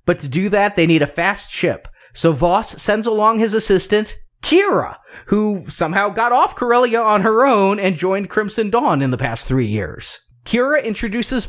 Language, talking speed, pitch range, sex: English, 185 wpm, 145-200 Hz, male